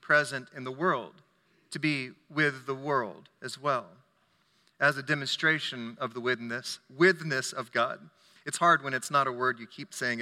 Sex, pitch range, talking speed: male, 145-180 Hz, 175 wpm